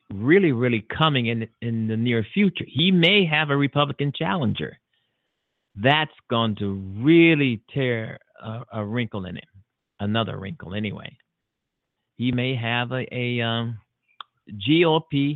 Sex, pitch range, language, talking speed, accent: male, 115-145 Hz, English, 135 wpm, American